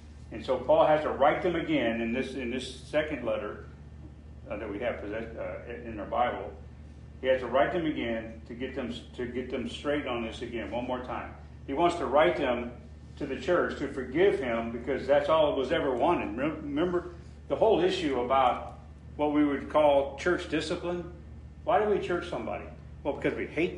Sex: male